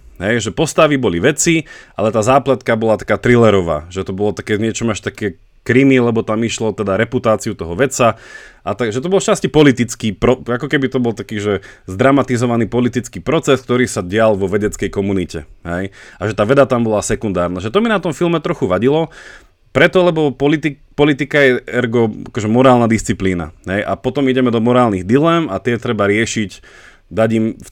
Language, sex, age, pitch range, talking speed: Slovak, male, 30-49, 105-130 Hz, 185 wpm